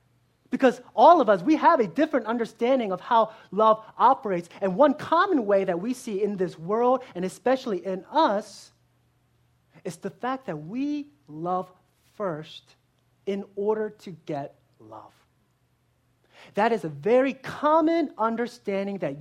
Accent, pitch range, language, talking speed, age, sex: American, 175-260 Hz, English, 145 wpm, 30-49, male